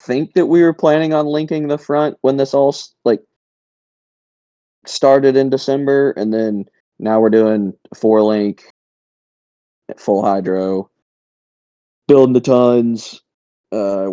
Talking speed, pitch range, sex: 125 wpm, 95-120 Hz, male